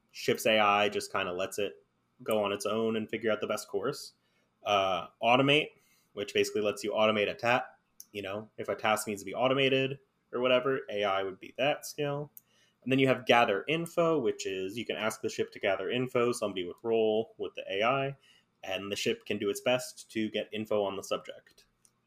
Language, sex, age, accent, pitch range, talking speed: English, male, 20-39, American, 105-135 Hz, 210 wpm